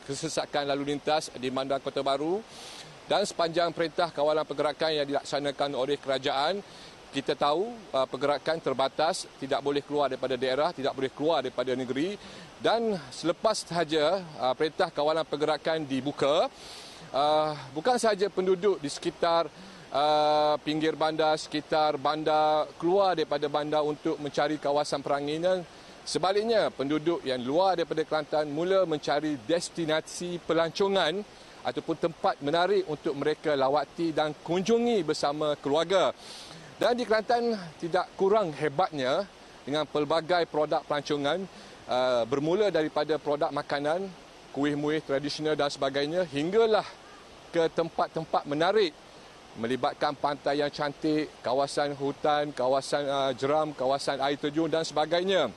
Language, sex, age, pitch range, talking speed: Malay, male, 40-59, 145-170 Hz, 115 wpm